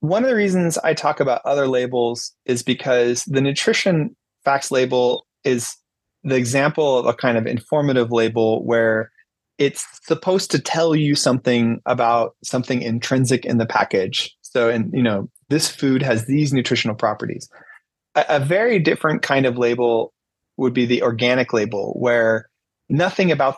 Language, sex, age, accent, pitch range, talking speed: English, male, 30-49, American, 115-145 Hz, 160 wpm